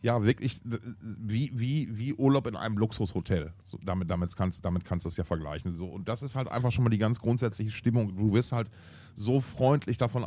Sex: male